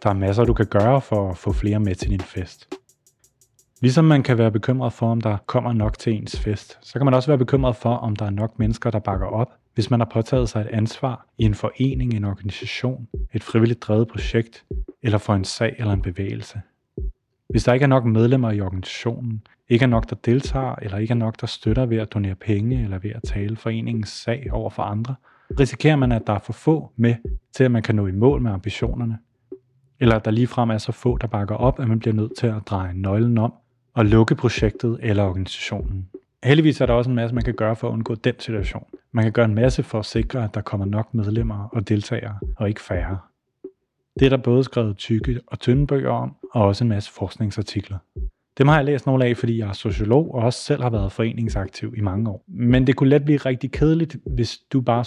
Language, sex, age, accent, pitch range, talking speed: Danish, male, 20-39, native, 105-125 Hz, 235 wpm